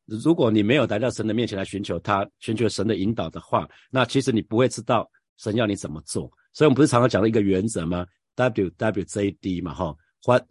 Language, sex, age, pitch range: Chinese, male, 50-69, 95-120 Hz